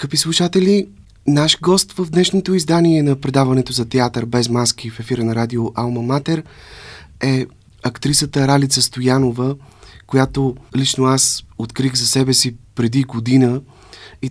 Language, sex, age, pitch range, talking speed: Bulgarian, male, 30-49, 110-130 Hz, 140 wpm